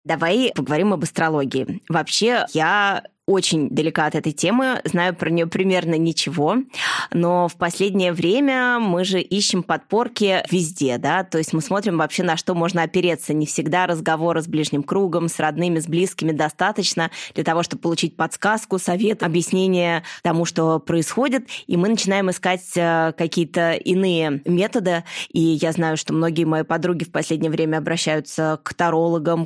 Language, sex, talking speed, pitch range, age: Russian, female, 155 wpm, 160-190 Hz, 20-39